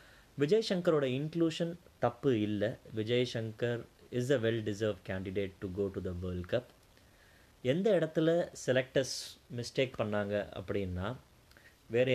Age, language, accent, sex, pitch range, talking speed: 20-39, Tamil, native, male, 105-145 Hz, 125 wpm